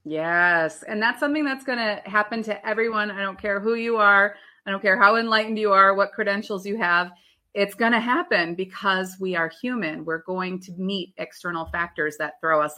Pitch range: 165-215 Hz